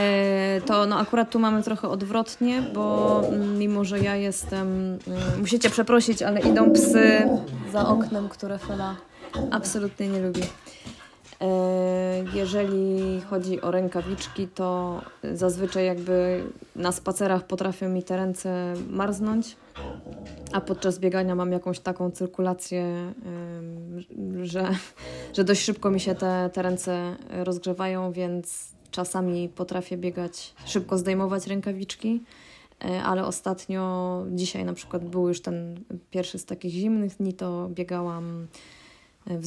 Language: Polish